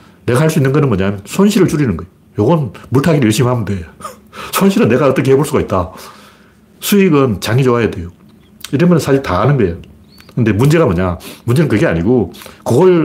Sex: male